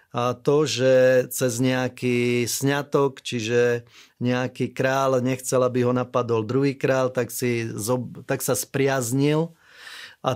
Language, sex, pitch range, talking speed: Slovak, male, 120-145 Hz, 120 wpm